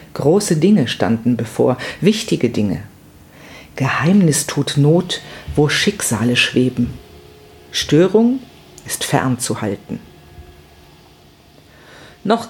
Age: 50-69